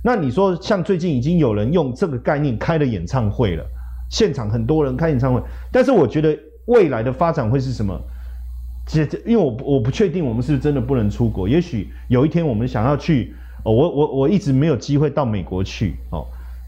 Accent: native